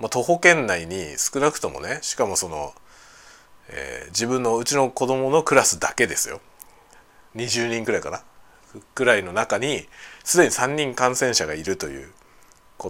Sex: male